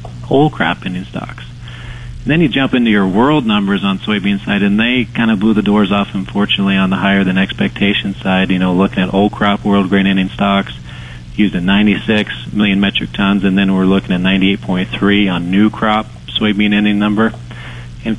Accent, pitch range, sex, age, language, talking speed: American, 100-115 Hz, male, 30-49, English, 190 wpm